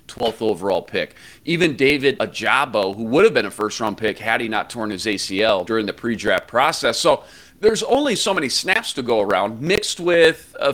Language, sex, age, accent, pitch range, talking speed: English, male, 40-59, American, 115-155 Hz, 195 wpm